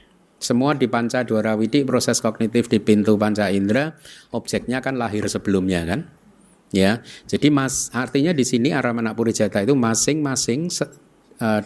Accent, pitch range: native, 90-120 Hz